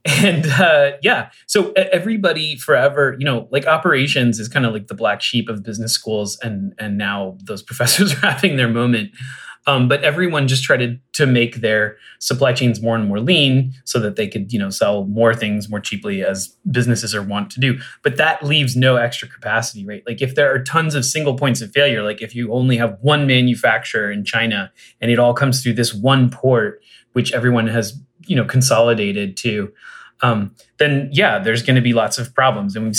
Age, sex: 30-49, male